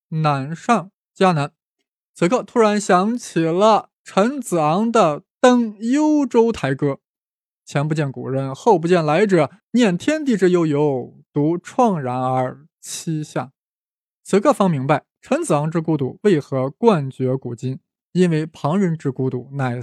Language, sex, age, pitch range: Chinese, male, 20-39, 150-200 Hz